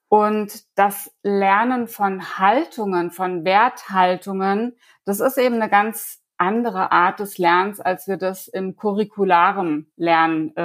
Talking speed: 125 wpm